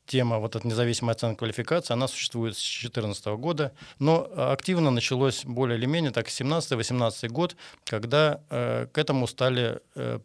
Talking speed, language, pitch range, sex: 150 wpm, Russian, 110-135 Hz, male